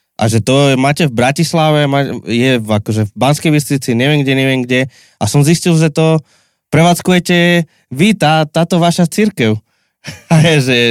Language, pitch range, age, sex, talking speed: Slovak, 115-150 Hz, 20-39, male, 160 wpm